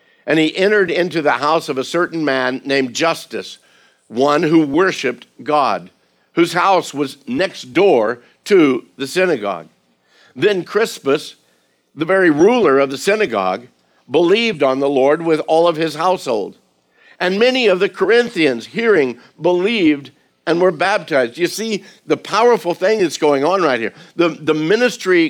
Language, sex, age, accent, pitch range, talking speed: English, male, 60-79, American, 145-190 Hz, 150 wpm